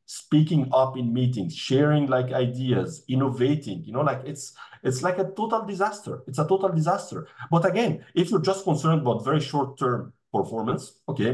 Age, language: 40-59, English